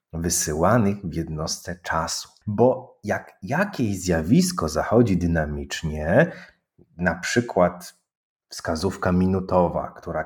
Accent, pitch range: native, 85-110 Hz